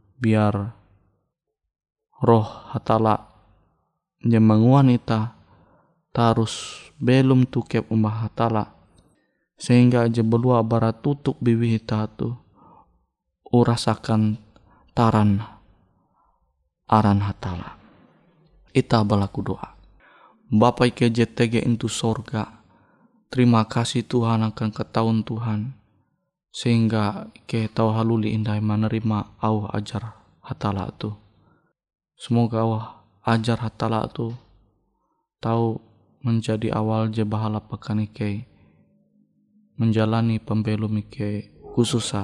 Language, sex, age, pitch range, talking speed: Indonesian, male, 20-39, 105-115 Hz, 85 wpm